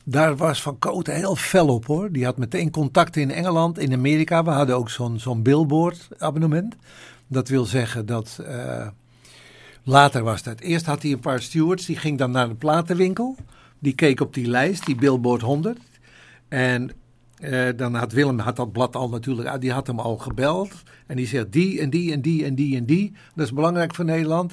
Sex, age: male, 60-79